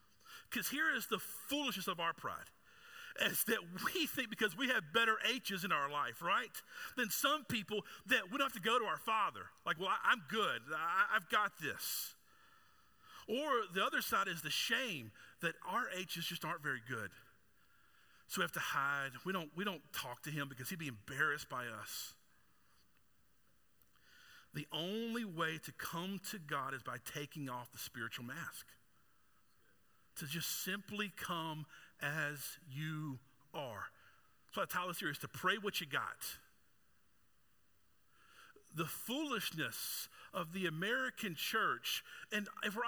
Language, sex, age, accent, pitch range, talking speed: English, male, 50-69, American, 160-250 Hz, 160 wpm